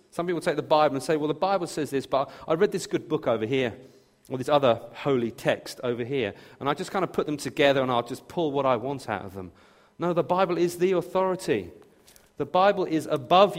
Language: English